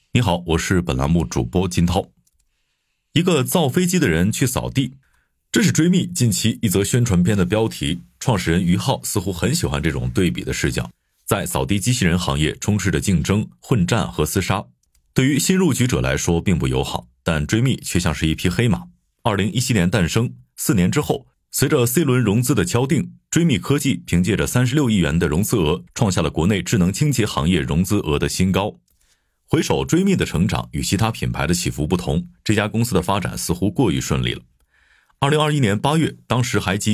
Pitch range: 80-125 Hz